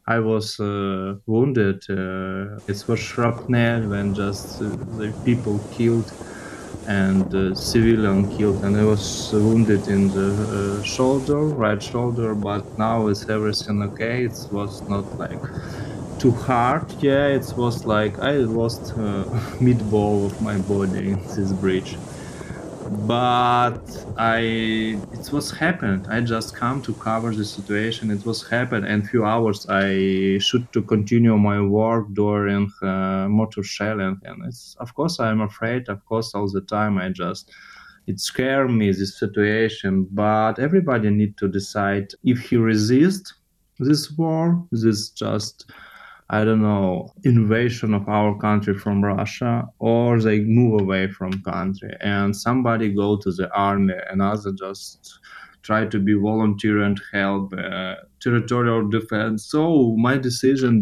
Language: Czech